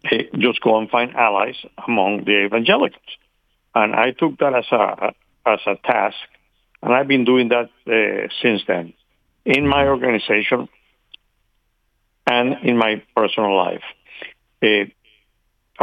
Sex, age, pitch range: male, 60-79, 110-135 Hz